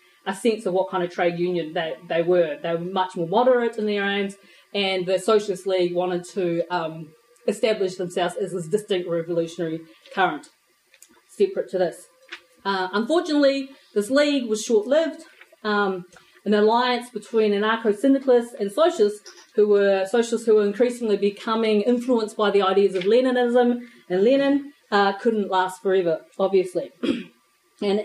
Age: 30-49